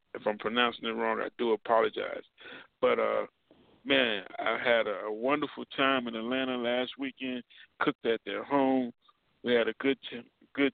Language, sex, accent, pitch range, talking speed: English, male, American, 120-140 Hz, 170 wpm